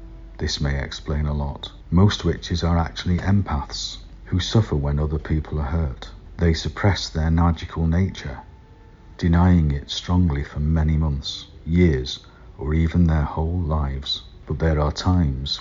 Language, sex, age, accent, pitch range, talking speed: English, male, 50-69, British, 75-90 Hz, 145 wpm